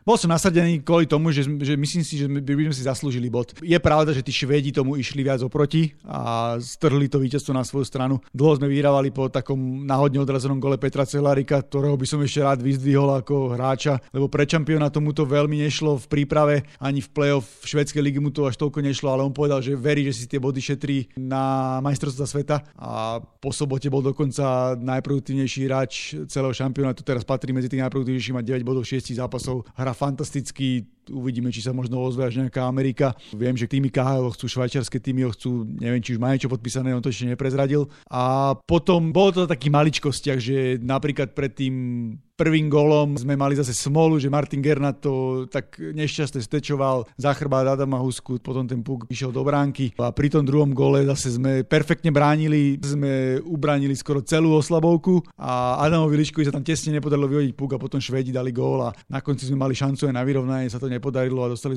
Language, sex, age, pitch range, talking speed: Slovak, male, 30-49, 130-145 Hz, 200 wpm